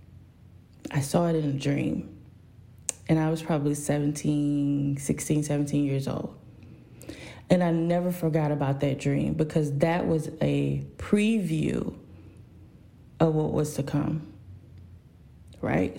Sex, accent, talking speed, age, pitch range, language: female, American, 125 wpm, 20-39, 125-170 Hz, English